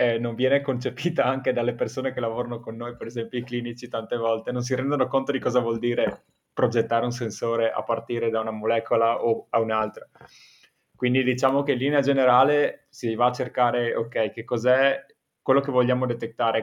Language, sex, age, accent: Italian, male, 20-39, native